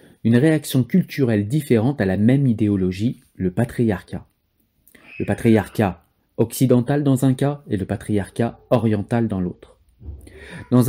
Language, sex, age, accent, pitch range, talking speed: French, male, 40-59, French, 100-130 Hz, 125 wpm